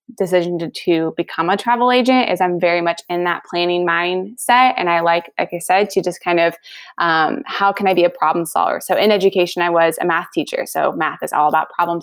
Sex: female